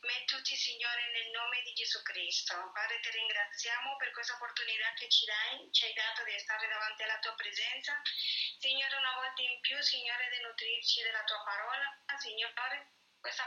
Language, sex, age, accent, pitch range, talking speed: Italian, female, 30-49, American, 230-270 Hz, 180 wpm